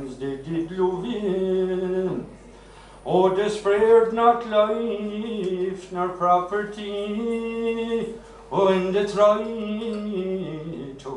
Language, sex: Hungarian, male